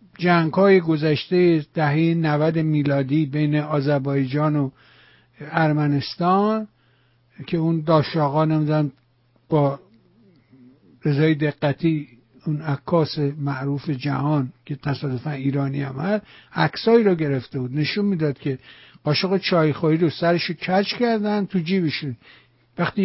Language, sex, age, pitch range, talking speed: Persian, male, 60-79, 140-190 Hz, 105 wpm